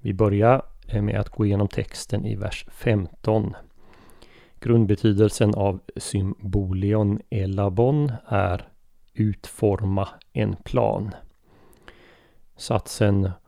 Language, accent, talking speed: Swedish, native, 85 wpm